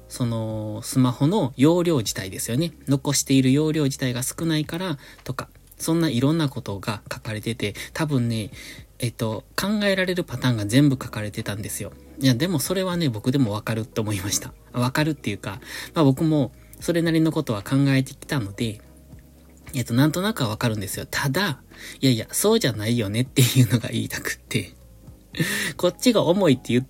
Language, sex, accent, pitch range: Japanese, male, native, 115-160 Hz